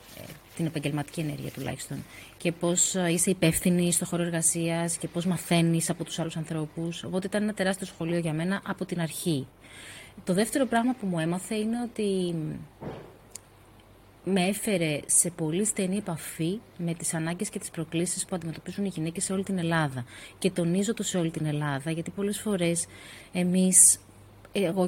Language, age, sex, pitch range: Greek, 30-49, female, 160-195 Hz